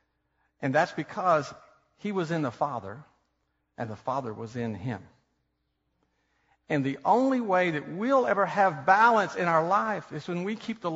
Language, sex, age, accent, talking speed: English, male, 50-69, American, 170 wpm